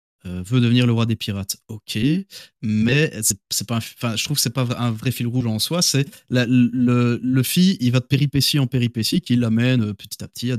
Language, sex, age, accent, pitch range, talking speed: French, male, 30-49, French, 115-135 Hz, 245 wpm